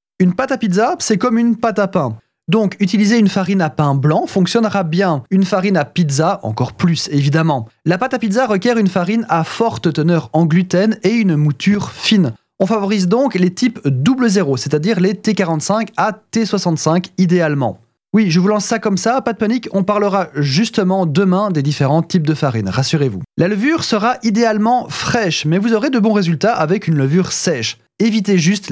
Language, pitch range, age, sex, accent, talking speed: French, 150-215 Hz, 20-39, male, French, 190 wpm